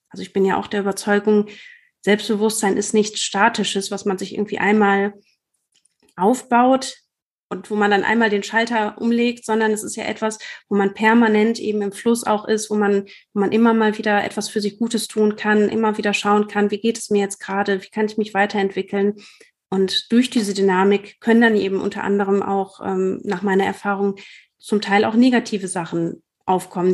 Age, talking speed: 30-49, 190 wpm